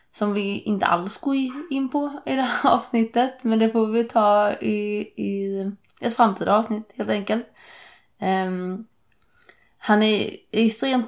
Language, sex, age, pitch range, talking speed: Swedish, female, 20-39, 175-225 Hz, 150 wpm